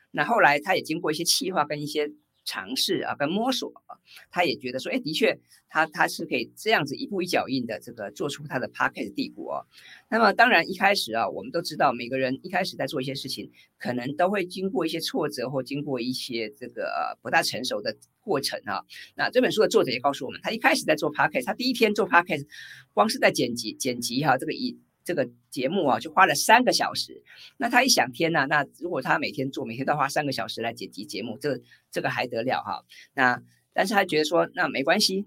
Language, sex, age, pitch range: Chinese, female, 50-69, 130-195 Hz